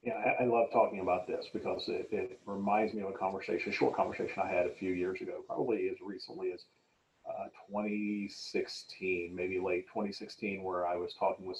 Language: English